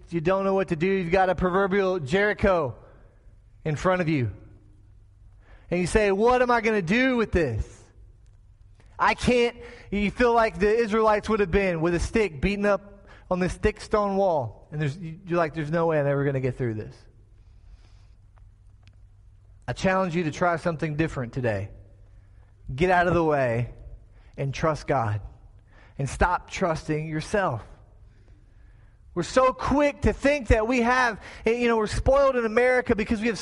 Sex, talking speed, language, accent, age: male, 175 wpm, English, American, 30-49